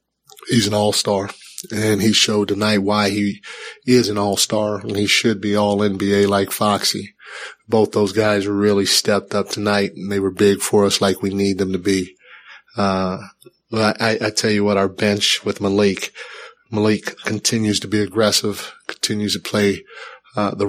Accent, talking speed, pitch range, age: American, 180 wpm, 100-105 Hz, 30-49